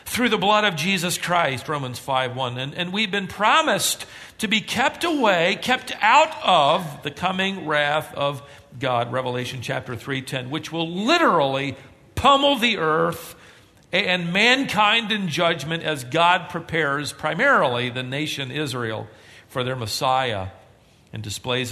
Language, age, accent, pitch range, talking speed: English, 50-69, American, 110-155 Hz, 145 wpm